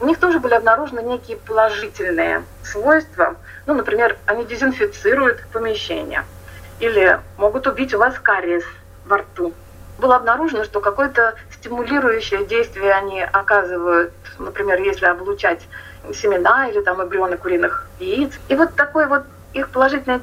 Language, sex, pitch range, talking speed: Russian, female, 195-285 Hz, 130 wpm